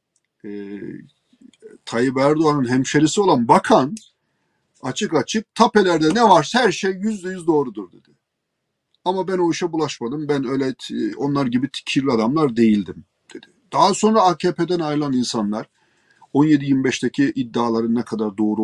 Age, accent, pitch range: 40-59, native, 125-180 Hz